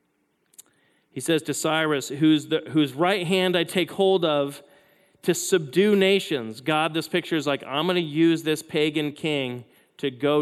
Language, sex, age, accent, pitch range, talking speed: English, male, 30-49, American, 150-185 Hz, 160 wpm